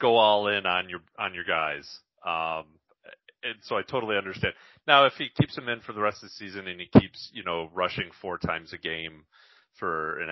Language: English